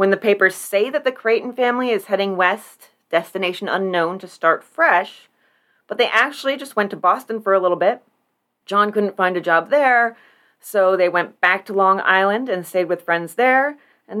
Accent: American